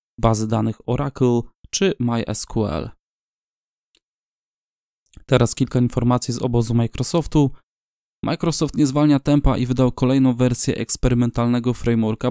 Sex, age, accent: male, 20-39, native